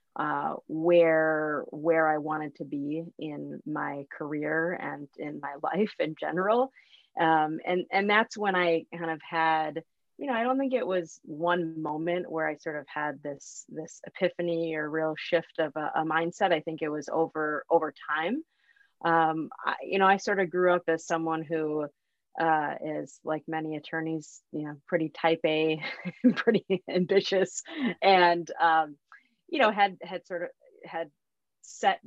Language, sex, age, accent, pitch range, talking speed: English, female, 30-49, American, 150-175 Hz, 170 wpm